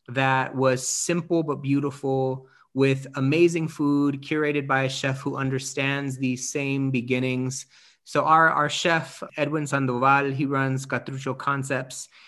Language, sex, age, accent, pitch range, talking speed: English, male, 30-49, American, 130-150 Hz, 130 wpm